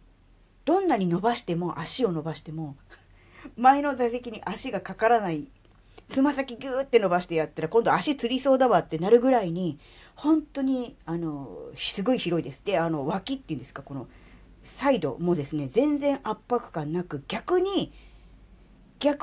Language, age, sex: Japanese, 40-59, female